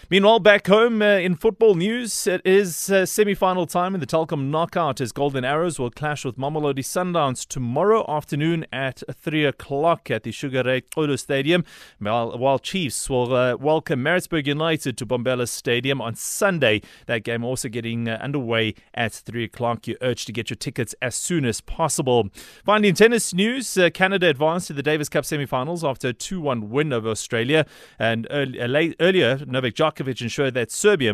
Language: English